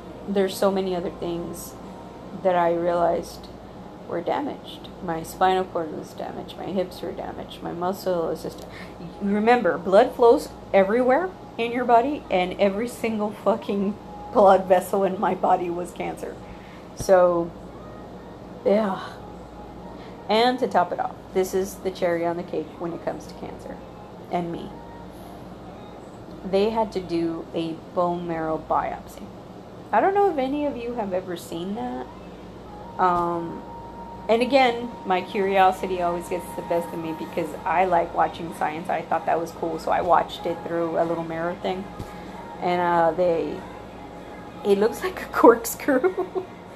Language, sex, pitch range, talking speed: English, female, 175-220 Hz, 155 wpm